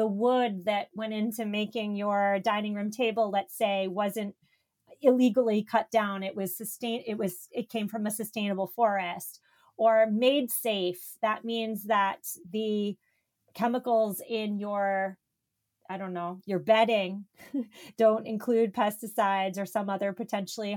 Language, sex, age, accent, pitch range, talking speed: English, female, 30-49, American, 200-235 Hz, 140 wpm